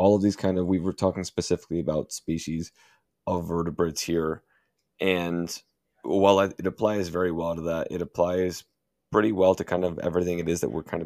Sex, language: male, English